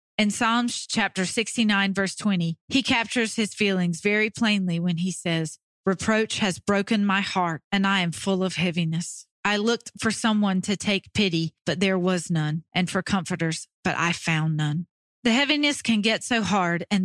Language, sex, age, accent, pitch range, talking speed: English, female, 40-59, American, 170-210 Hz, 180 wpm